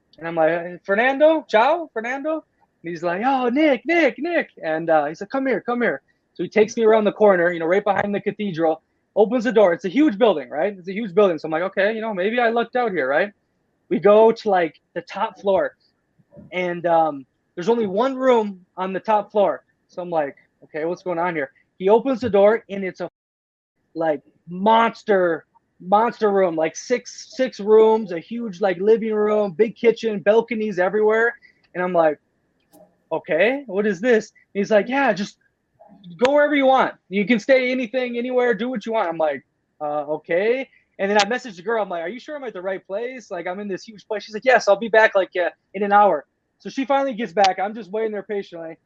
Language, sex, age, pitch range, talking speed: English, male, 20-39, 180-235 Hz, 220 wpm